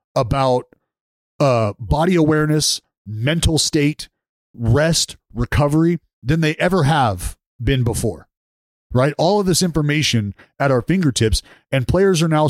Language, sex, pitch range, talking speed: English, male, 120-155 Hz, 125 wpm